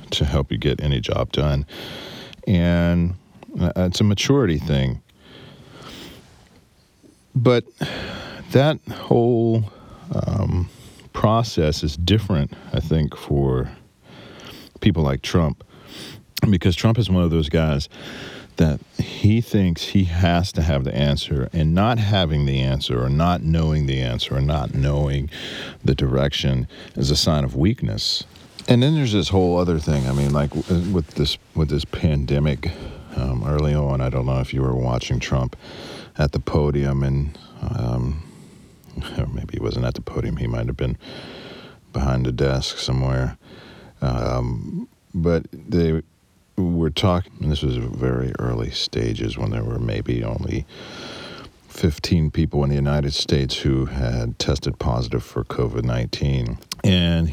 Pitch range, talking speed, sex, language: 70-90 Hz, 145 wpm, male, English